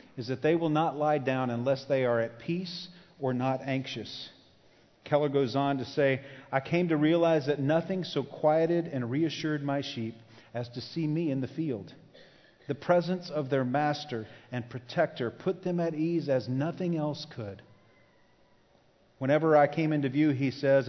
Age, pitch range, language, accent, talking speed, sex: 40-59, 120-150 Hz, English, American, 175 wpm, male